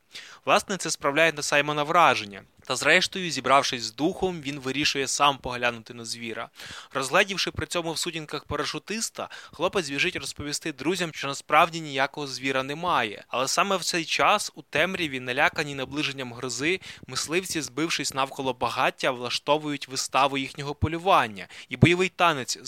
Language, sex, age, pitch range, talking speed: Ukrainian, male, 20-39, 130-165 Hz, 140 wpm